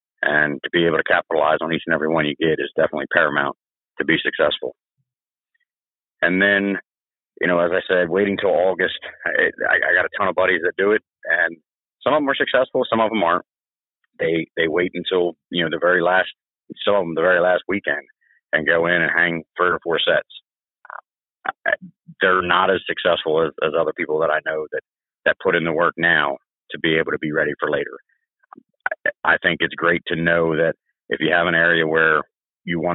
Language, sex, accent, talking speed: English, male, American, 210 wpm